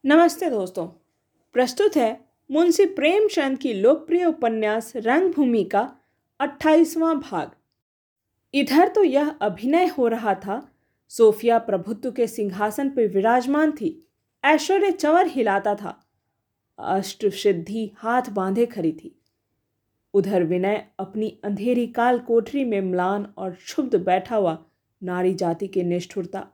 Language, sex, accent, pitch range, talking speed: Hindi, female, native, 190-285 Hz, 120 wpm